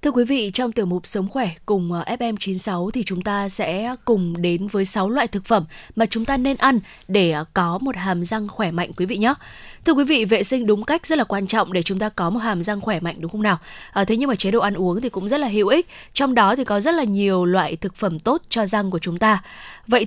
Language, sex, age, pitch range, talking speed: Vietnamese, female, 20-39, 195-250 Hz, 270 wpm